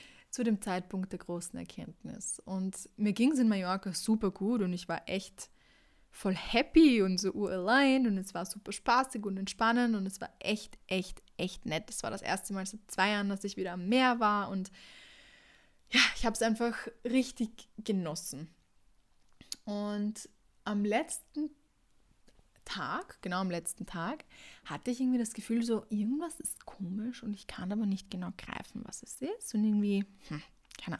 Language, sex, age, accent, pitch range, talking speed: German, female, 20-39, German, 185-230 Hz, 175 wpm